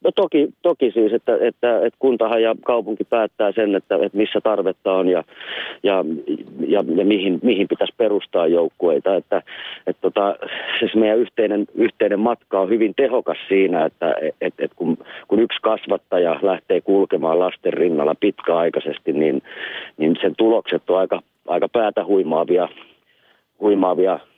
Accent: native